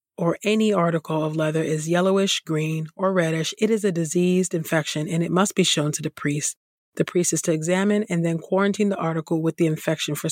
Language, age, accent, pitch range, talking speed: English, 30-49, American, 160-185 Hz, 215 wpm